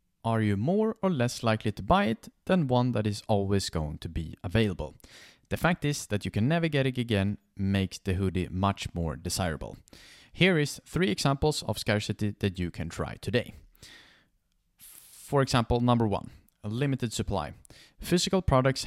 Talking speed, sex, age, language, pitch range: 170 wpm, male, 30-49, English, 95-135 Hz